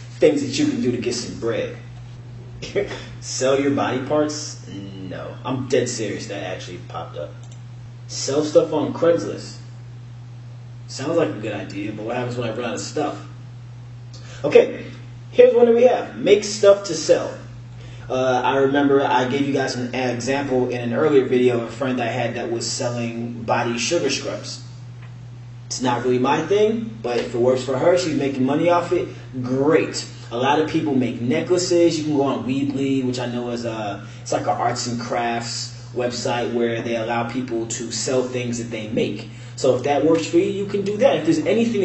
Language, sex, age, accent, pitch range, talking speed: English, male, 20-39, American, 120-140 Hz, 195 wpm